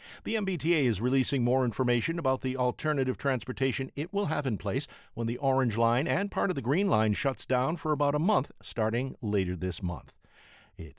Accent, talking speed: American, 195 wpm